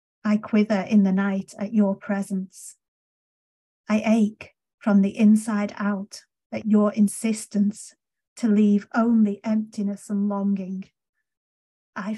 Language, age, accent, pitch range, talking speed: English, 40-59, British, 195-220 Hz, 120 wpm